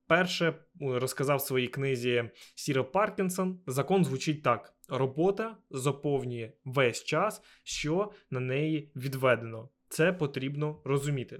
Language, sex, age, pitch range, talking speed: Ukrainian, male, 20-39, 130-165 Hz, 110 wpm